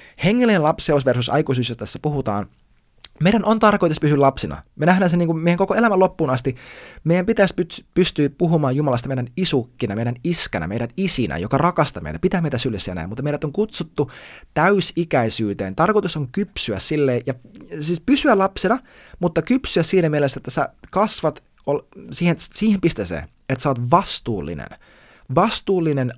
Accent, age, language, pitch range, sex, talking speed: native, 20-39, Finnish, 120-175 Hz, male, 160 wpm